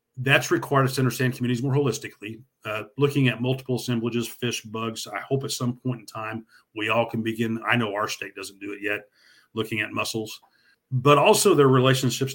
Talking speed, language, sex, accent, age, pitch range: 200 wpm, English, male, American, 40-59, 110-125 Hz